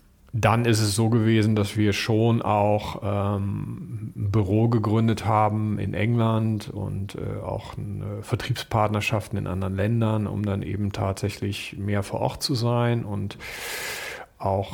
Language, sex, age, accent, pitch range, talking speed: German, male, 40-59, German, 105-120 Hz, 145 wpm